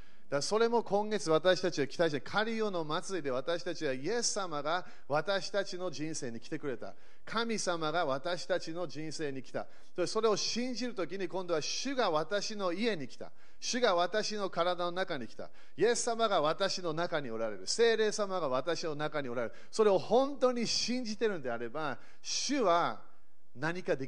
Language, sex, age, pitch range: Japanese, male, 40-59, 155-225 Hz